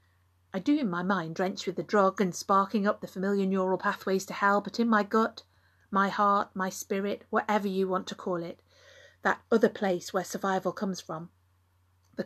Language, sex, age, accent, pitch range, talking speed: English, female, 40-59, British, 160-205 Hz, 195 wpm